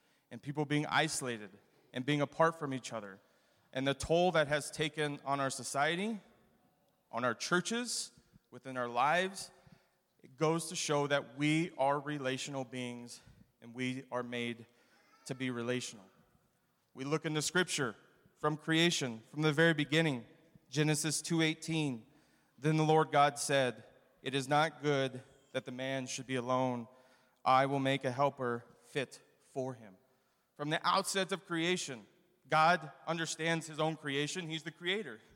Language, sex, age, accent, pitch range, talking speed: English, male, 30-49, American, 135-165 Hz, 155 wpm